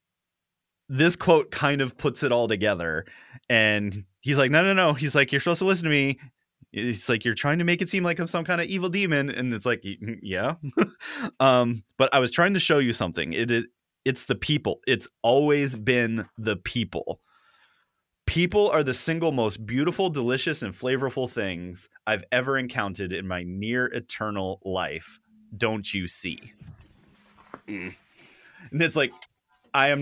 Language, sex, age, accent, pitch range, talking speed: English, male, 20-39, American, 105-145 Hz, 175 wpm